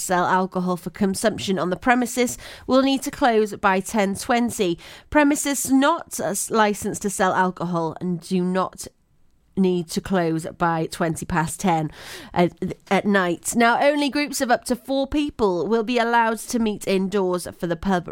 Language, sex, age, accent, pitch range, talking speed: English, female, 30-49, British, 180-240 Hz, 160 wpm